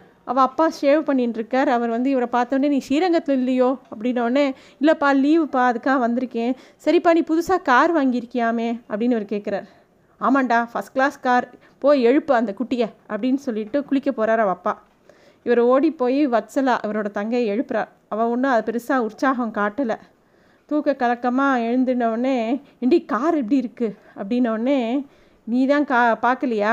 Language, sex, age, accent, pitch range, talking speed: Tamil, female, 30-49, native, 225-280 Hz, 135 wpm